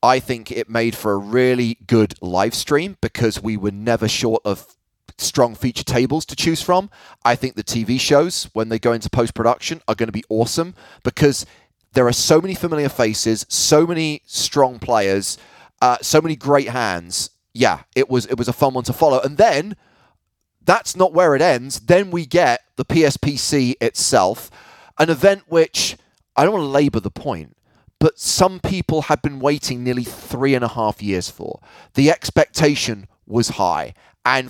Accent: British